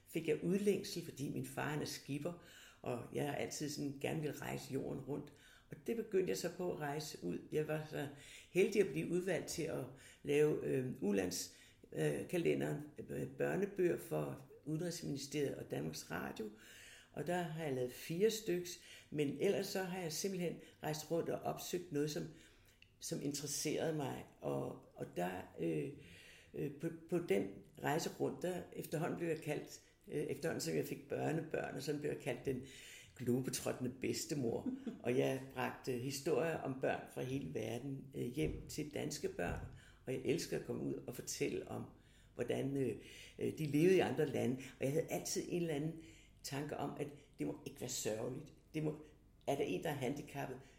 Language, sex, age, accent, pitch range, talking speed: Danish, female, 60-79, native, 130-170 Hz, 180 wpm